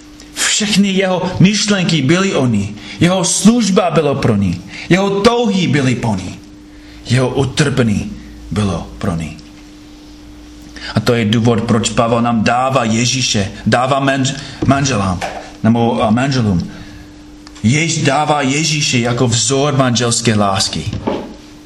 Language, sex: Czech, male